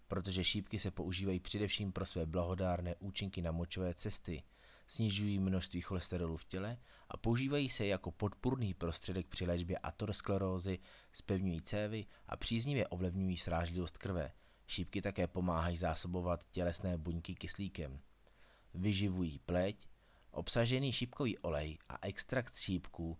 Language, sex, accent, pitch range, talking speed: Czech, male, native, 90-105 Hz, 125 wpm